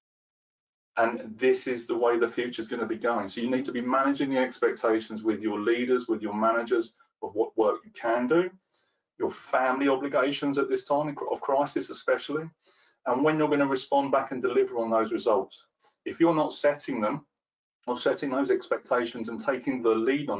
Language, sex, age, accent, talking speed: English, male, 30-49, British, 195 wpm